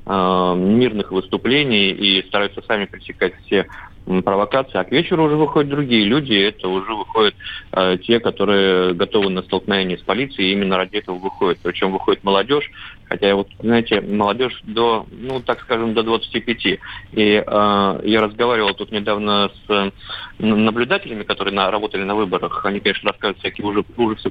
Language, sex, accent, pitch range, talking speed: Russian, male, native, 100-115 Hz, 150 wpm